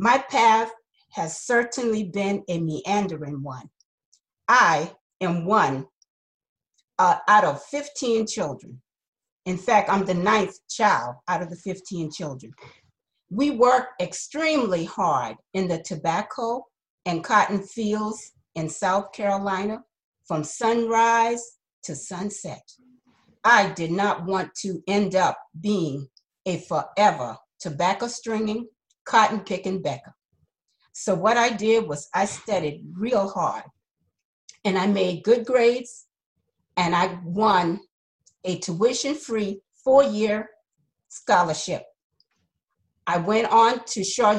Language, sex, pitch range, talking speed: English, female, 180-225 Hz, 115 wpm